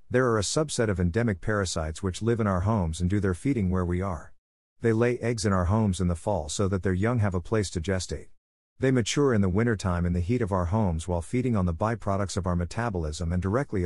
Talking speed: 250 wpm